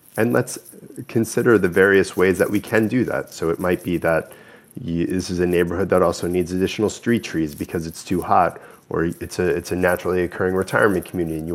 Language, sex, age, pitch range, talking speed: English, male, 30-49, 90-100 Hz, 210 wpm